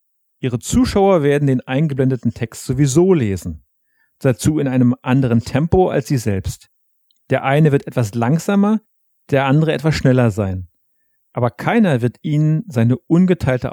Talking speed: 140 wpm